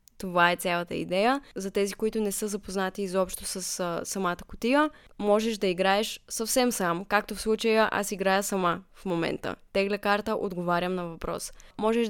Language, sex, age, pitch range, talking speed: Bulgarian, female, 20-39, 190-235 Hz, 170 wpm